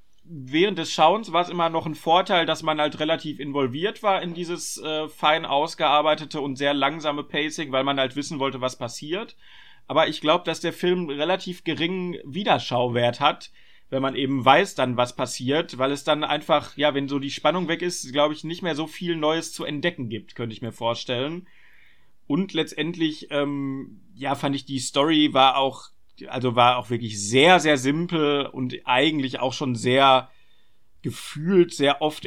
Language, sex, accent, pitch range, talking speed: German, male, German, 130-155 Hz, 180 wpm